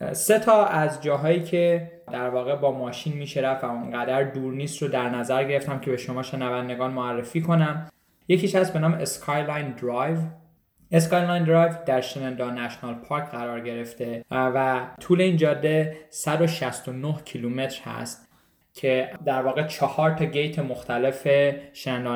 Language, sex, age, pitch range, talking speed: Persian, male, 10-29, 130-155 Hz, 145 wpm